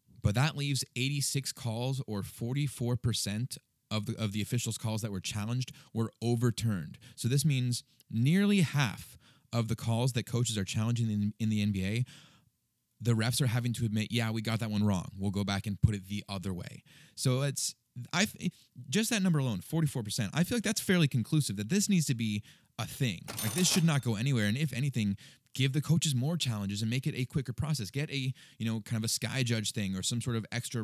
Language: English